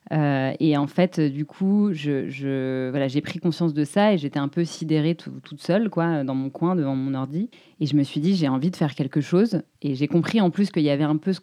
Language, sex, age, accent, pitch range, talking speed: French, female, 20-39, French, 135-170 Hz, 270 wpm